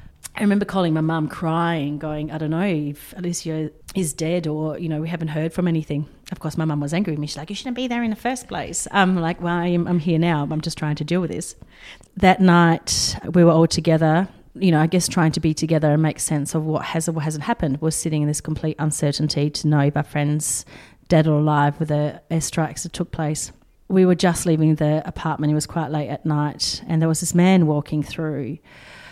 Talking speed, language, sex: 245 wpm, English, female